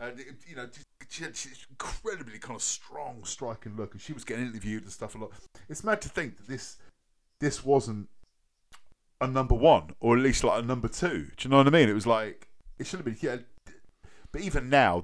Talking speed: 230 wpm